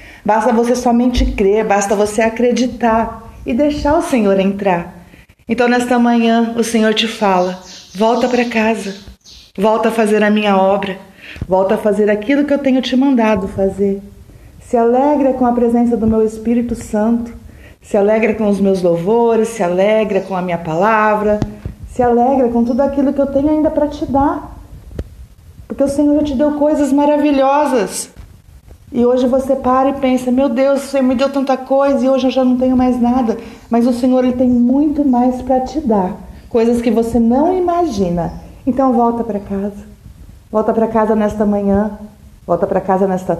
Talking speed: 175 wpm